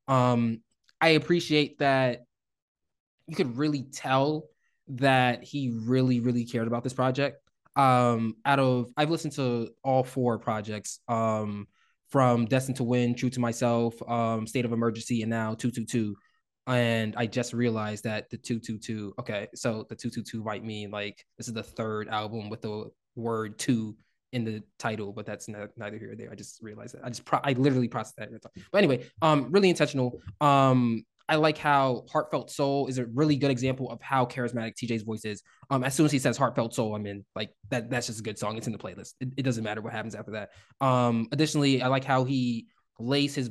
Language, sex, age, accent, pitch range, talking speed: English, male, 20-39, American, 110-130 Hz, 200 wpm